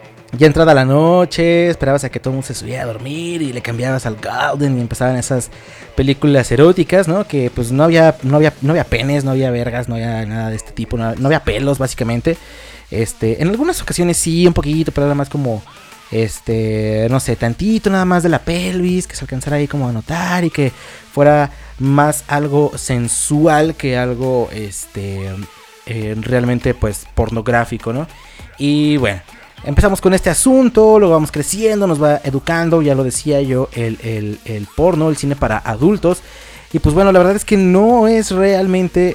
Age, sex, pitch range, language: 30-49, male, 120-165 Hz, Spanish